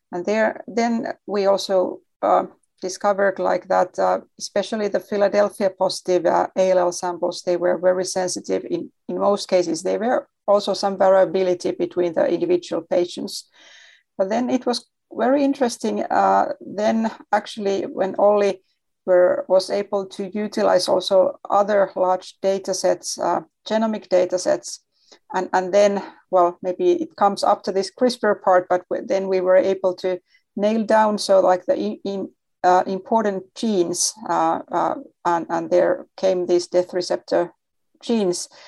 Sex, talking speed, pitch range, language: female, 145 wpm, 180-205 Hz, English